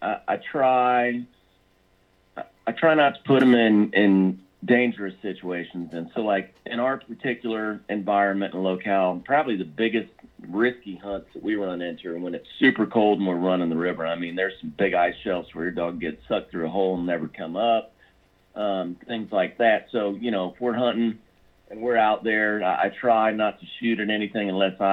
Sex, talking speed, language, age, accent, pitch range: male, 195 wpm, English, 40-59, American, 90-110 Hz